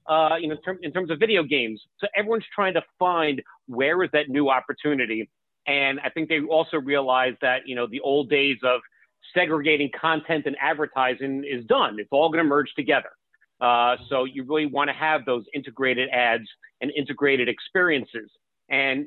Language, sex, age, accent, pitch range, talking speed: English, male, 40-59, American, 125-150 Hz, 175 wpm